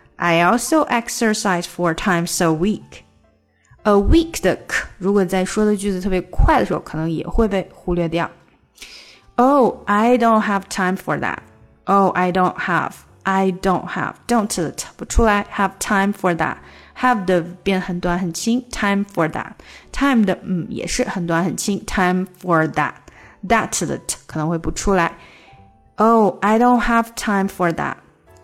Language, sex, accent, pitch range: Chinese, female, native, 180-235 Hz